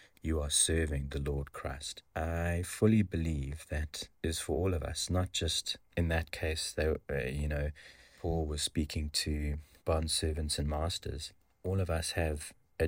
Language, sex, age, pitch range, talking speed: English, male, 30-49, 80-90 Hz, 170 wpm